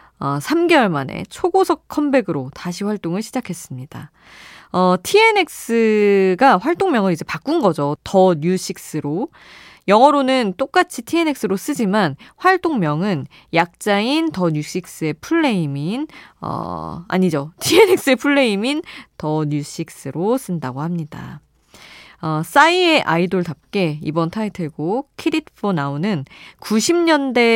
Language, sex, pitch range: Korean, female, 160-270 Hz